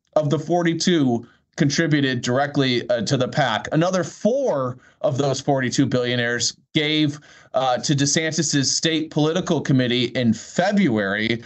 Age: 20-39